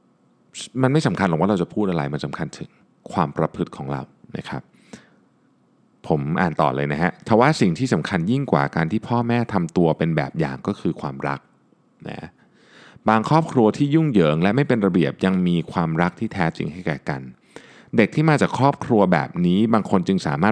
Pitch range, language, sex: 85-120 Hz, Thai, male